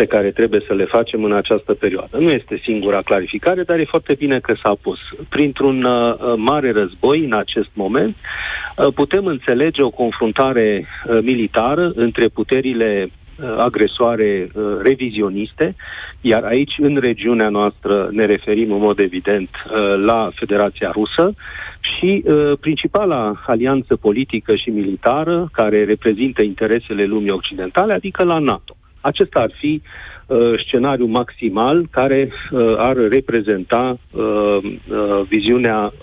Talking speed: 125 wpm